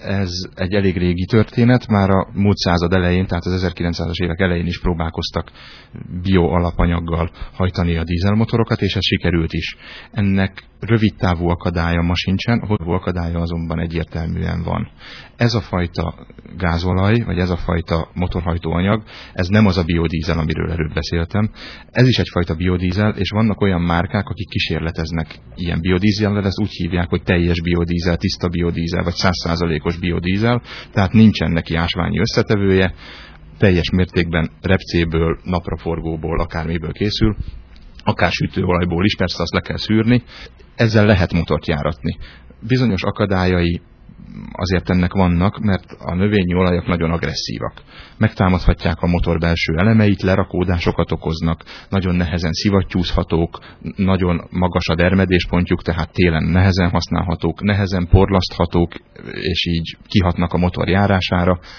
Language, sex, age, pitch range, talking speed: Hungarian, male, 30-49, 85-95 Hz, 130 wpm